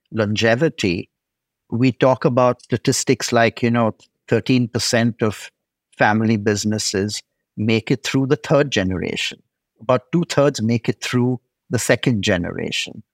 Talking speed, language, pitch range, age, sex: 125 wpm, English, 115-150 Hz, 50-69, male